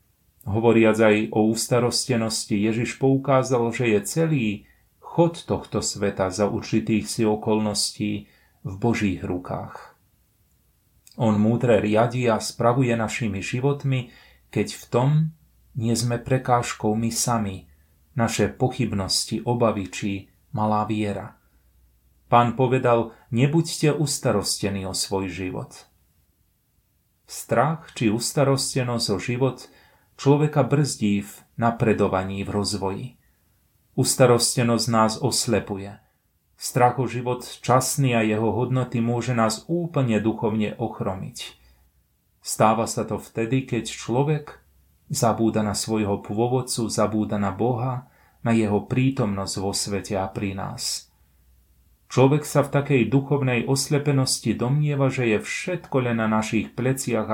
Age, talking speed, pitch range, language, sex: 30-49, 115 wpm, 100-125 Hz, Slovak, male